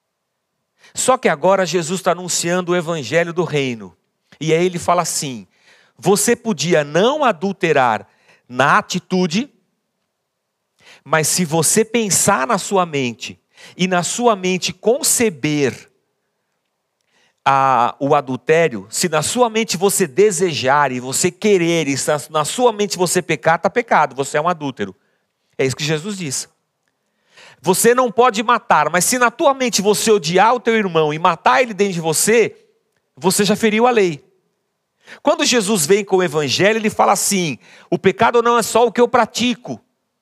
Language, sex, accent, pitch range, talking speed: Portuguese, male, Brazilian, 165-235 Hz, 160 wpm